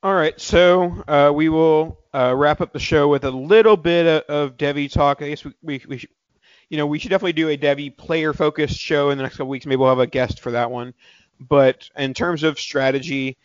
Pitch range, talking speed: 125-150 Hz, 235 wpm